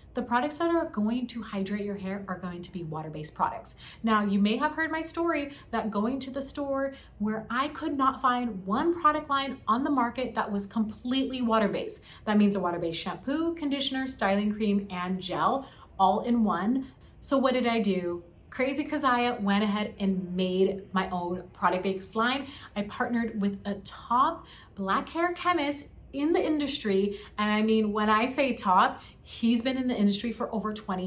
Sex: female